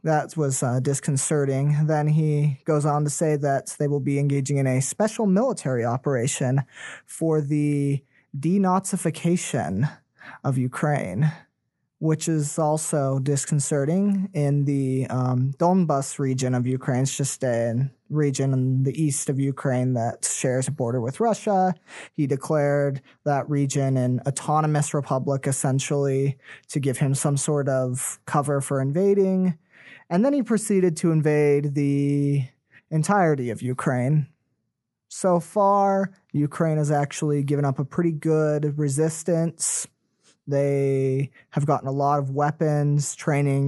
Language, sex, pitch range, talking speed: English, male, 135-165 Hz, 135 wpm